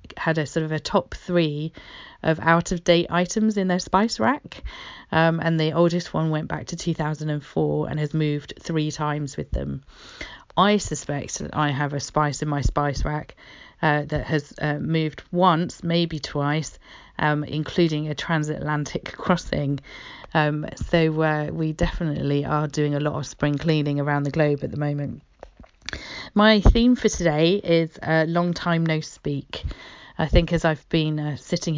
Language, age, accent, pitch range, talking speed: English, 40-59, British, 145-165 Hz, 170 wpm